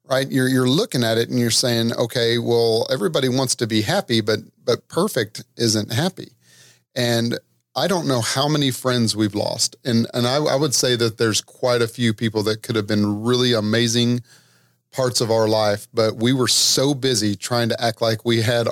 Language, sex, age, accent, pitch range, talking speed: English, male, 40-59, American, 115-135 Hz, 205 wpm